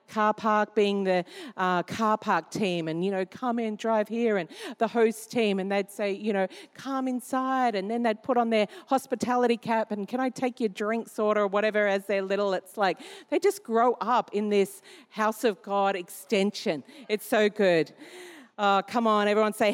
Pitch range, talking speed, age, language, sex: 195-235 Hz, 200 wpm, 40-59, English, female